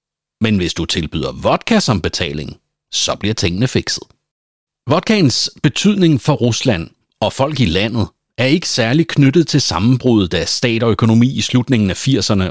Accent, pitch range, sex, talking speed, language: native, 100-145 Hz, male, 160 wpm, Danish